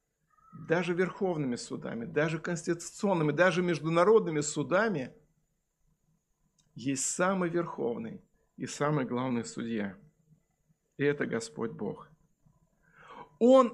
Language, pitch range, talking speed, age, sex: Russian, 155-195 Hz, 85 wpm, 50-69, male